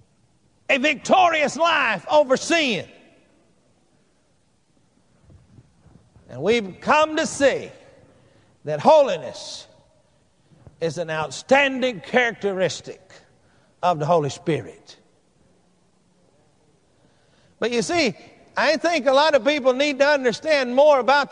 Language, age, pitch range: English, 50-69, 245-315 Hz